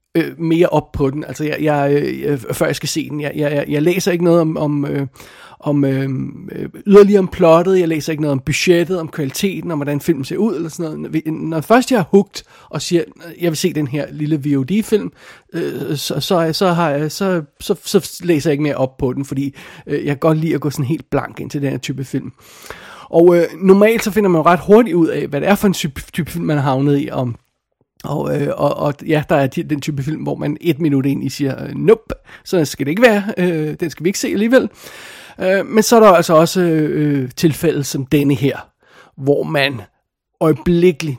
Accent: native